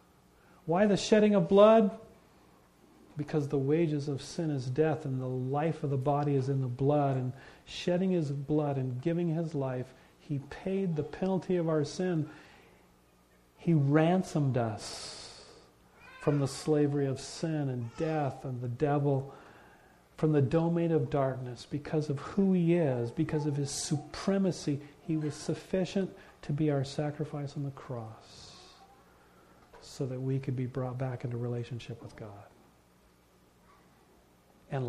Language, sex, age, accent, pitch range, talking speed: English, male, 40-59, American, 110-150 Hz, 150 wpm